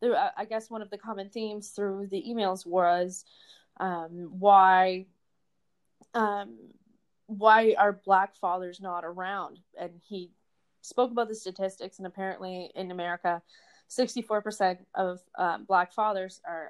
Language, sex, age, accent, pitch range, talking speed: English, female, 20-39, American, 185-235 Hz, 130 wpm